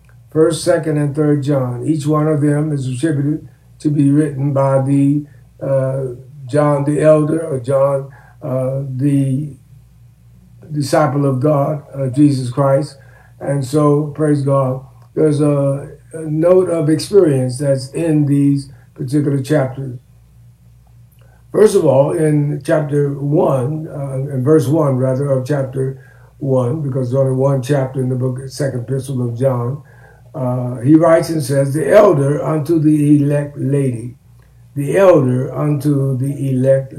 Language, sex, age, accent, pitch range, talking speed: English, male, 60-79, American, 130-150 Hz, 140 wpm